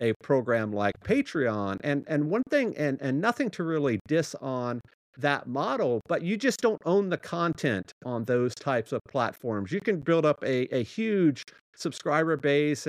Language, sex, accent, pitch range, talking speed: English, male, American, 125-165 Hz, 175 wpm